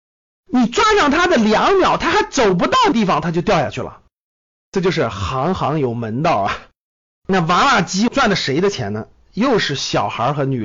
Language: Chinese